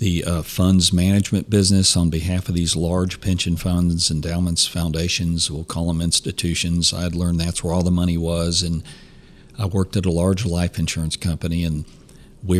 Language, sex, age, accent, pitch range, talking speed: English, male, 50-69, American, 85-105 Hz, 180 wpm